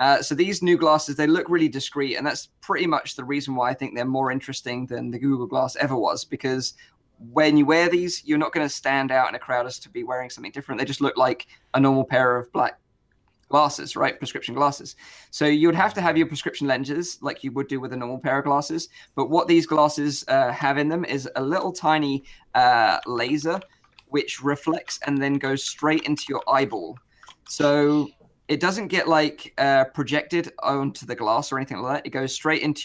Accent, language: British, English